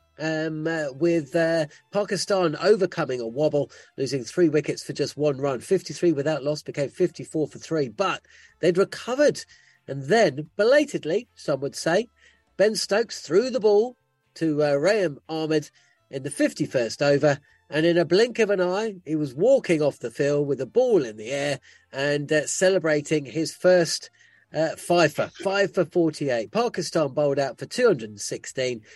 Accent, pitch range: British, 150-190 Hz